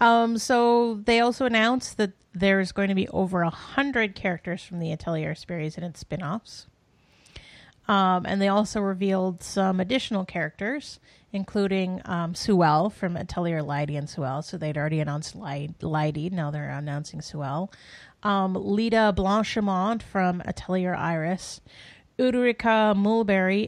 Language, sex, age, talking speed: English, female, 30-49, 135 wpm